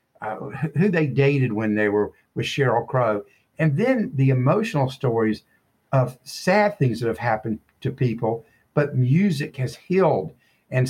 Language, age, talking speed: English, 60-79, 155 wpm